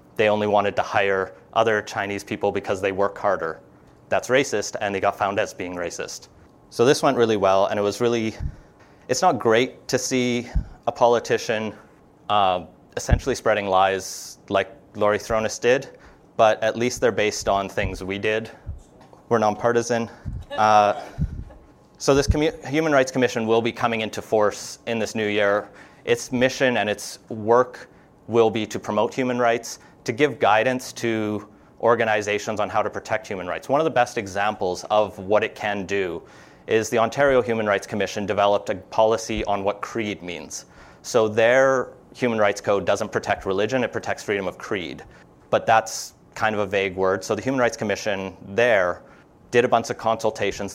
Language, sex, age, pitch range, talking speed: English, male, 30-49, 100-120 Hz, 175 wpm